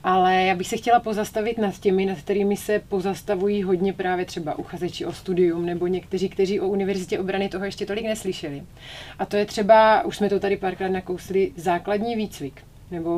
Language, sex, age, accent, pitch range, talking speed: Czech, female, 30-49, native, 175-205 Hz, 185 wpm